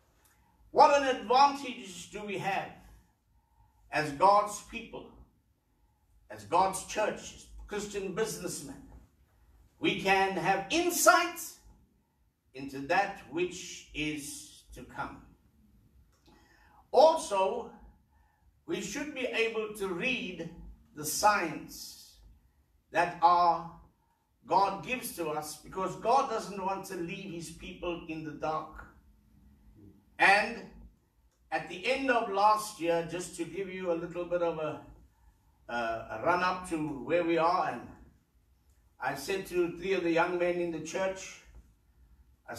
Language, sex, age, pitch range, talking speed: English, male, 60-79, 145-195 Hz, 120 wpm